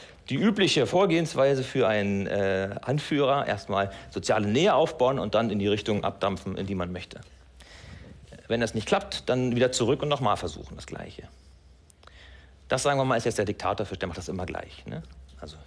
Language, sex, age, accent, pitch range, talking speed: German, male, 50-69, German, 90-130 Hz, 185 wpm